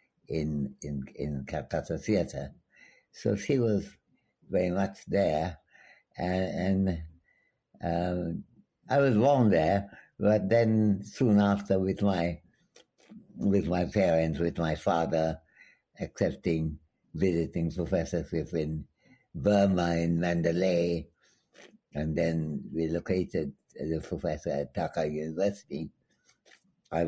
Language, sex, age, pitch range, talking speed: English, male, 60-79, 80-95 Hz, 105 wpm